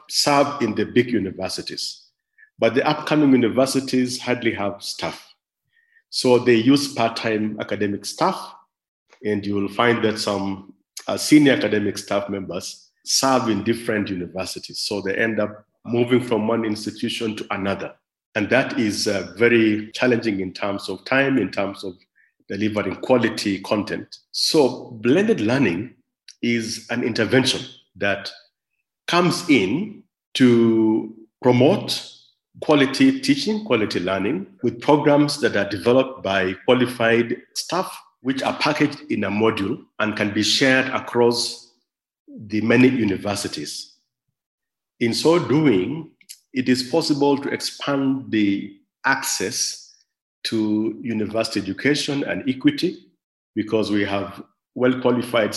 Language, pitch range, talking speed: English, 105-130 Hz, 125 wpm